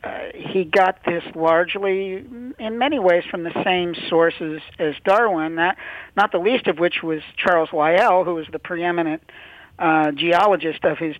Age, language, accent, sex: 50-69, English, American, male